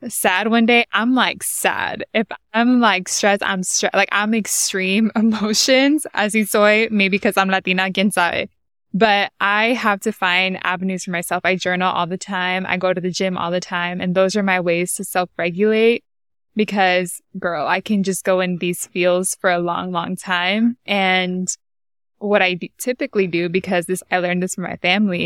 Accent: American